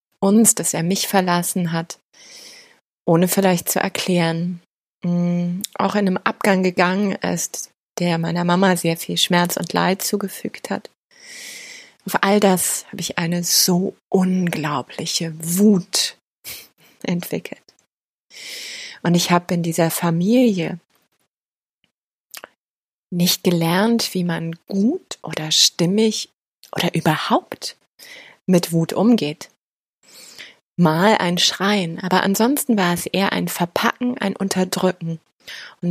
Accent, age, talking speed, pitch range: German, 30-49, 110 wpm, 170-205 Hz